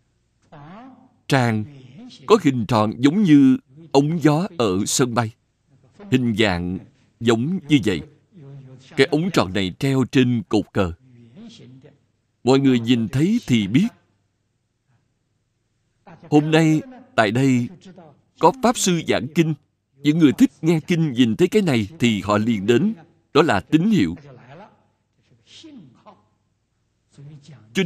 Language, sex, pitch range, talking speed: Vietnamese, male, 110-155 Hz, 125 wpm